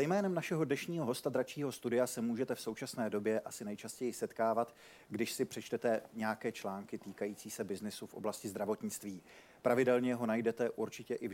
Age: 40-59